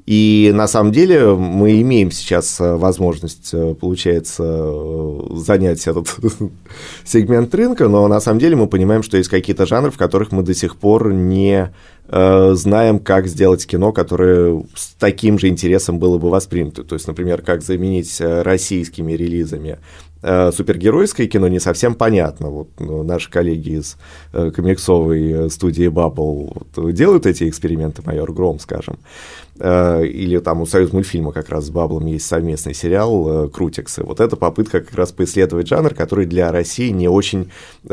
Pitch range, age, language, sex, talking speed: 85-105 Hz, 30-49, Russian, male, 150 wpm